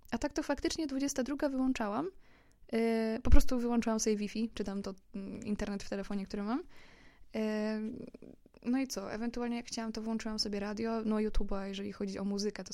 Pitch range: 210-245 Hz